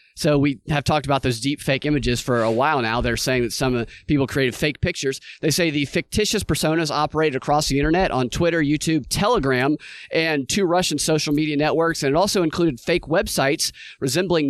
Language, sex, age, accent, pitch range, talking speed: English, male, 30-49, American, 140-175 Hz, 195 wpm